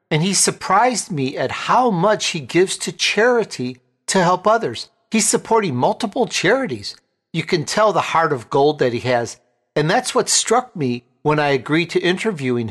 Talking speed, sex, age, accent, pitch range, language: 180 wpm, male, 50-69, American, 140-205 Hz, English